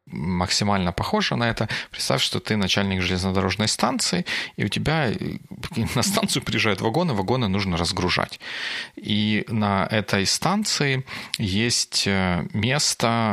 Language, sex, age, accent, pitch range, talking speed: Russian, male, 30-49, native, 100-125 Hz, 115 wpm